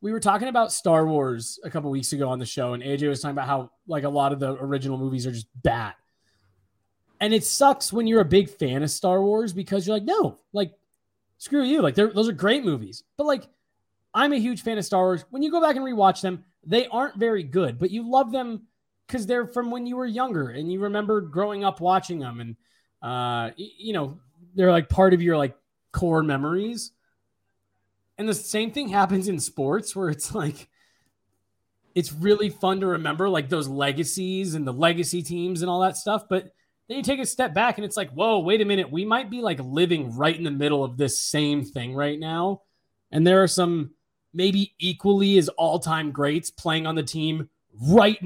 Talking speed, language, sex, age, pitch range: 215 wpm, English, male, 20-39, 145-210 Hz